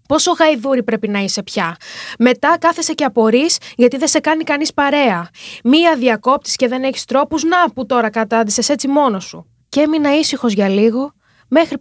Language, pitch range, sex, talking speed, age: Greek, 225-300 Hz, female, 180 wpm, 20-39